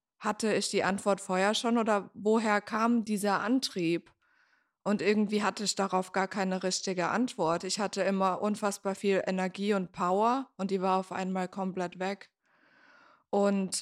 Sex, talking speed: female, 155 wpm